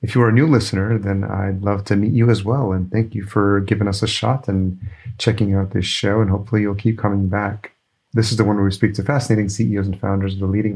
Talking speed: 270 wpm